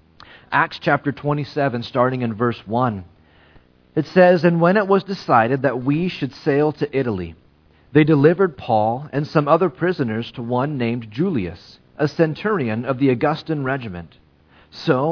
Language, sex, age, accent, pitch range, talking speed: English, male, 40-59, American, 110-155 Hz, 150 wpm